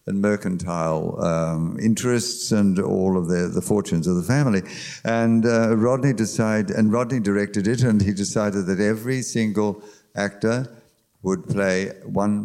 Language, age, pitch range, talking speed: English, 60-79, 100-115 Hz, 150 wpm